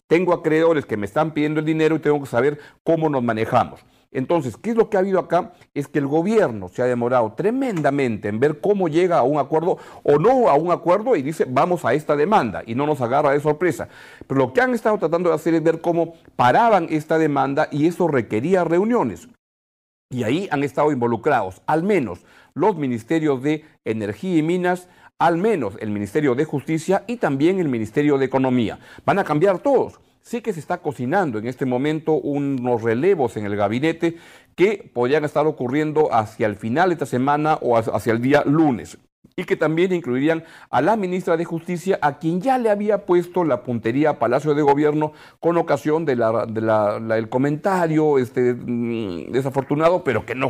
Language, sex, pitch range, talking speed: Spanish, male, 125-165 Hz, 190 wpm